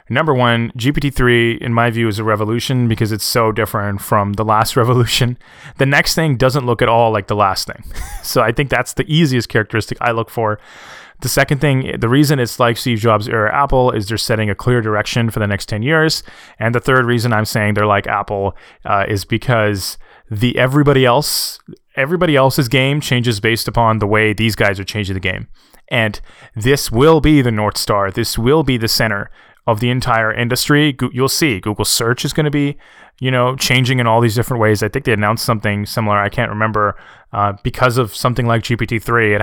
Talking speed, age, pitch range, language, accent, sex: 210 wpm, 20-39, 110-130 Hz, English, American, male